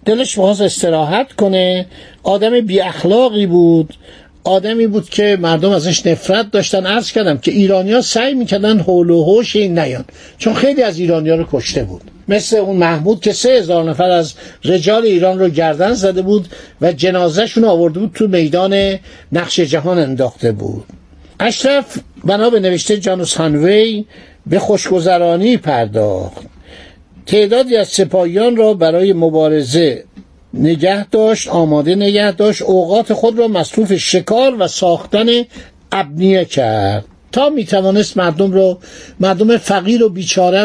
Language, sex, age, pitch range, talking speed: Persian, male, 60-79, 170-210 Hz, 135 wpm